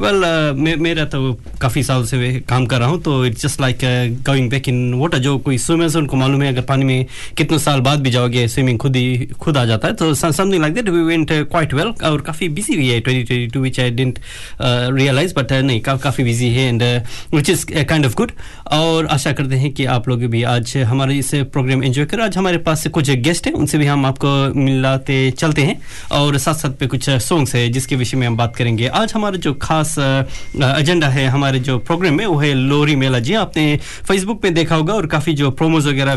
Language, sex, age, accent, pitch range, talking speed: Hindi, male, 20-39, native, 130-160 Hz, 230 wpm